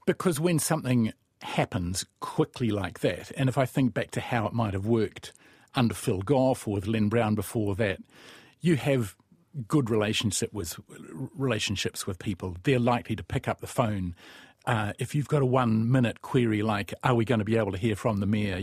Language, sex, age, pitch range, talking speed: English, male, 50-69, 105-125 Hz, 195 wpm